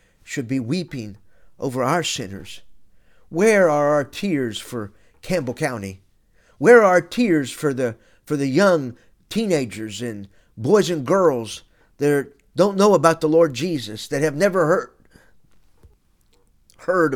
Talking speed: 140 wpm